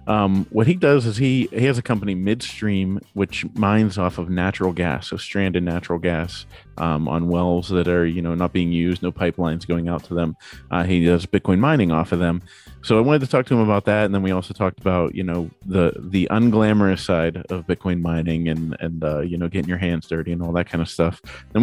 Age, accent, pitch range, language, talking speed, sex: 30-49, American, 85-105 Hz, English, 235 wpm, male